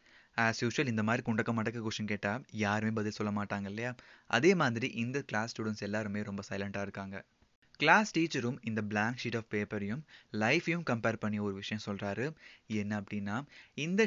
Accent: native